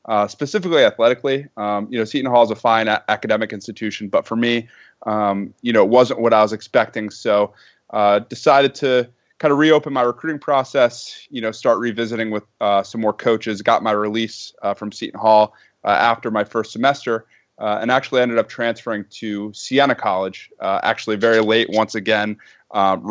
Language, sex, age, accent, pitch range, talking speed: English, male, 20-39, American, 105-120 Hz, 185 wpm